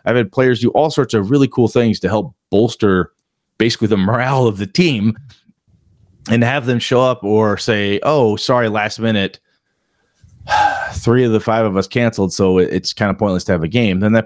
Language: English